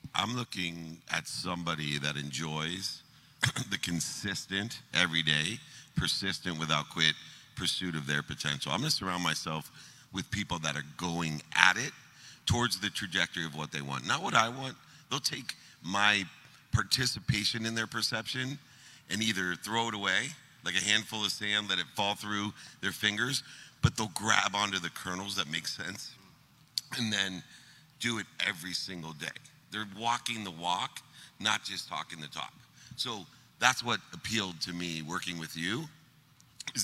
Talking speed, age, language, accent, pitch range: 160 wpm, 50-69, English, American, 85-120 Hz